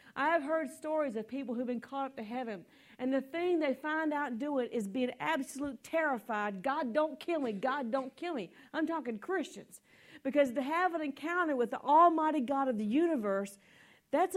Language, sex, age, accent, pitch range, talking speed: English, female, 40-59, American, 225-285 Hz, 200 wpm